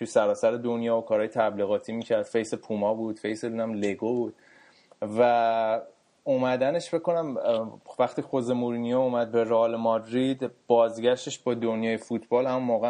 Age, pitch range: 20-39, 110-130 Hz